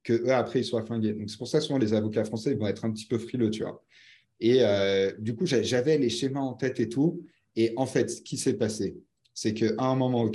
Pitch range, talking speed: 110-140 Hz, 260 wpm